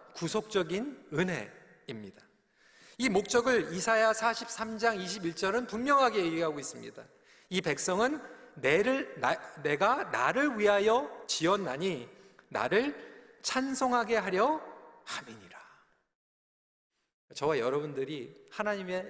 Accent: native